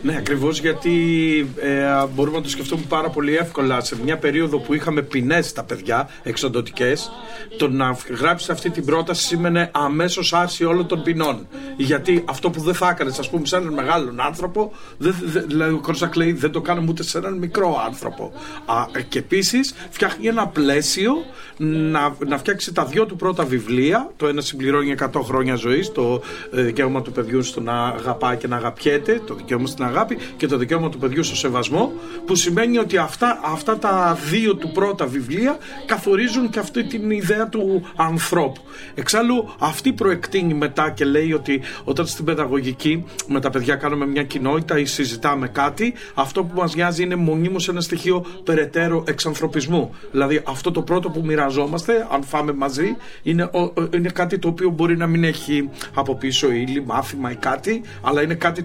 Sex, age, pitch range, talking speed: male, 40-59, 140-180 Hz, 170 wpm